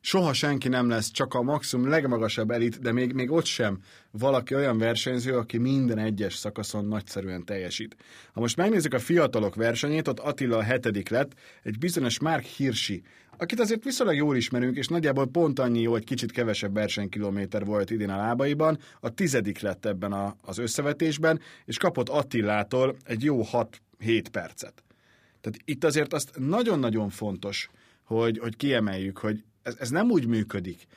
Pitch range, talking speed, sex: 105-135 Hz, 165 wpm, male